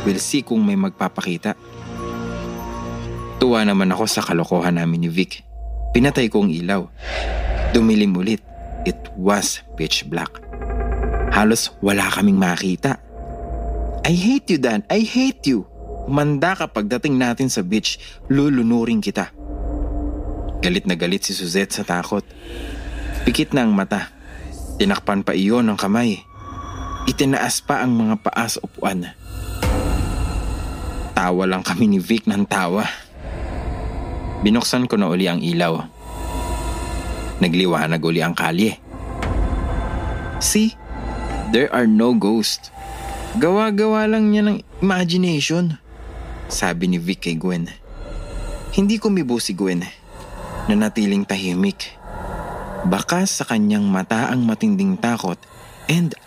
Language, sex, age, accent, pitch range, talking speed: English, male, 20-39, Filipino, 85-125 Hz, 115 wpm